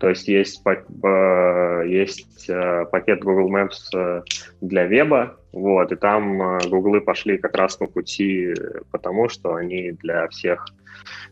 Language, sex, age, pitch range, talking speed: Russian, male, 20-39, 90-100 Hz, 125 wpm